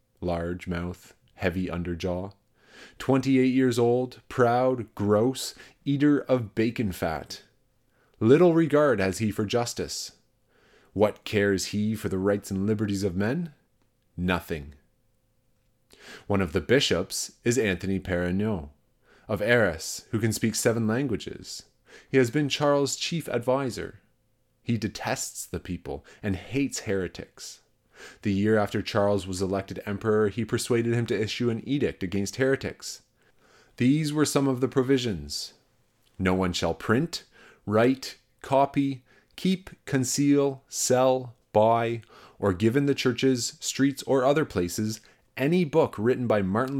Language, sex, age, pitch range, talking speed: English, male, 30-49, 100-130 Hz, 130 wpm